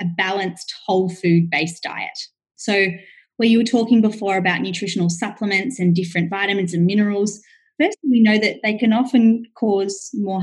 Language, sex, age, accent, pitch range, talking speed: English, female, 20-39, Australian, 180-240 Hz, 160 wpm